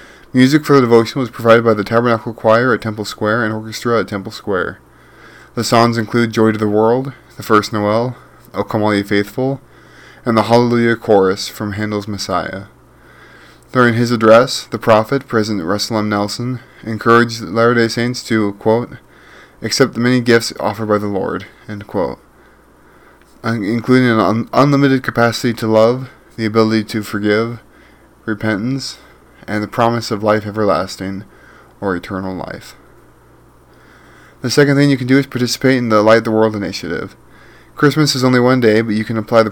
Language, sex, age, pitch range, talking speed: English, male, 20-39, 105-120 Hz, 170 wpm